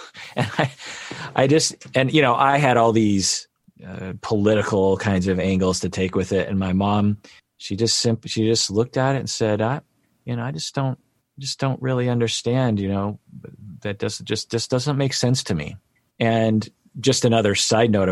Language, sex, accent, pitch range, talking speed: English, male, American, 90-120 Hz, 195 wpm